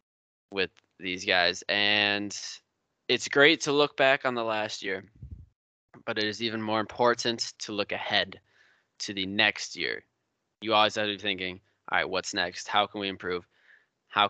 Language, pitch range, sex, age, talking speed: English, 95-110 Hz, male, 20-39, 170 wpm